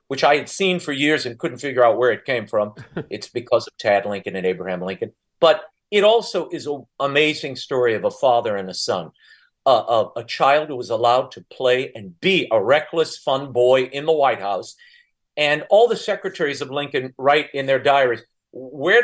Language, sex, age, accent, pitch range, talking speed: English, male, 50-69, American, 125-180 Hz, 205 wpm